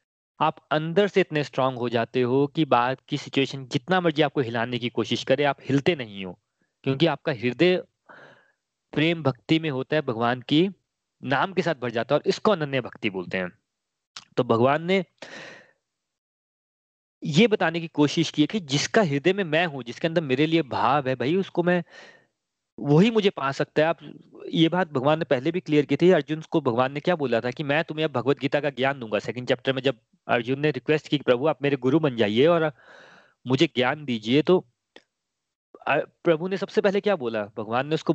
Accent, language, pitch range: native, Hindi, 135-175 Hz